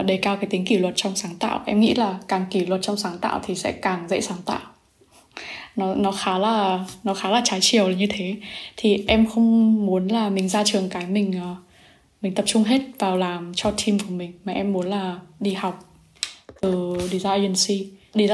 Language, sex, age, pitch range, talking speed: Vietnamese, female, 10-29, 190-220 Hz, 215 wpm